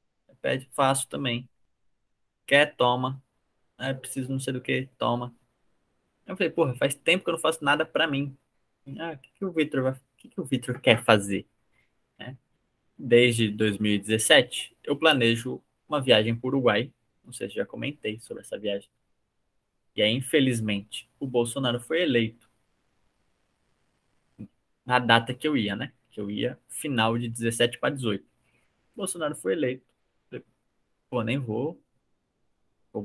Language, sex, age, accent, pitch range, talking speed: Portuguese, male, 20-39, Brazilian, 115-135 Hz, 145 wpm